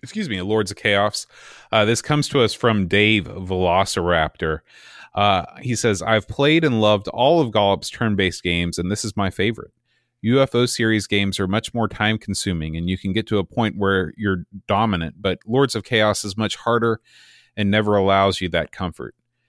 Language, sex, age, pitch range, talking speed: English, male, 30-49, 95-115 Hz, 185 wpm